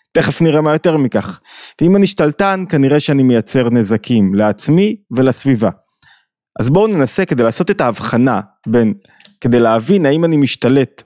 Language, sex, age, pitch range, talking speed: Hebrew, male, 20-39, 120-160 Hz, 145 wpm